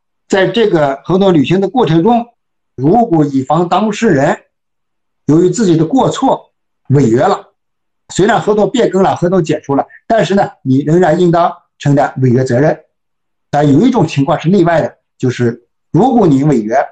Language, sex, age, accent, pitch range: Chinese, male, 60-79, native, 150-215 Hz